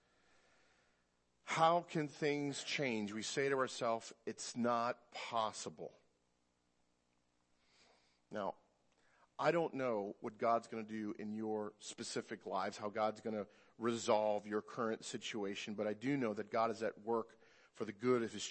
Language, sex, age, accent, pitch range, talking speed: English, male, 40-59, American, 90-130 Hz, 150 wpm